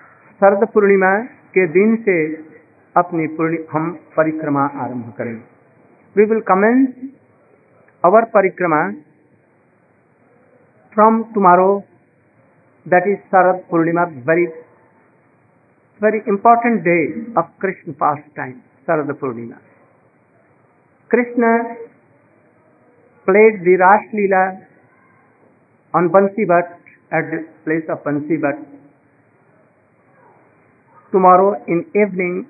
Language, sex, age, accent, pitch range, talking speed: Hindi, male, 60-79, native, 160-215 Hz, 85 wpm